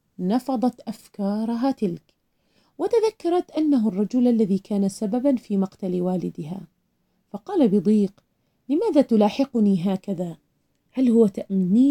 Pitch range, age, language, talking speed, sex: 195-255 Hz, 30-49, Arabic, 100 wpm, female